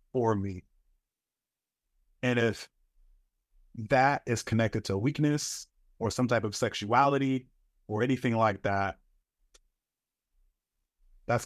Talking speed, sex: 100 wpm, male